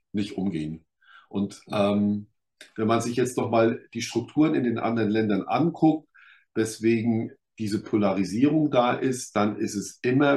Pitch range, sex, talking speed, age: 105-125 Hz, male, 150 wpm, 50-69